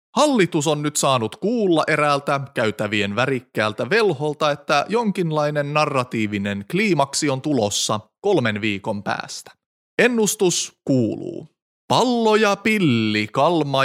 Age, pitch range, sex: 30-49, 110-170 Hz, male